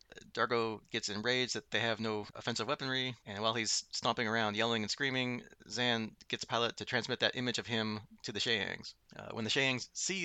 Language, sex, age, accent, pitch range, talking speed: English, male, 30-49, American, 105-125 Hz, 195 wpm